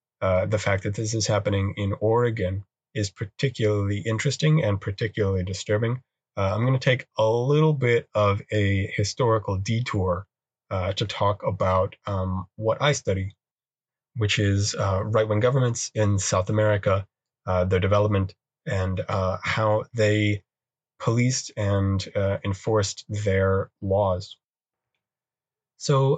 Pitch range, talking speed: 95-115 Hz, 130 wpm